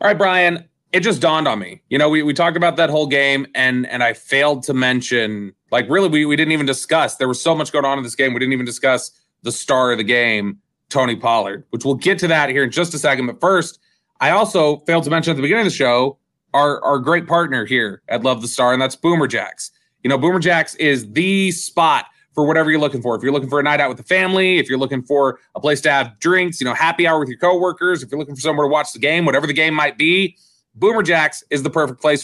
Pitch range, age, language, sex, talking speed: 130-170 Hz, 30-49, English, male, 270 wpm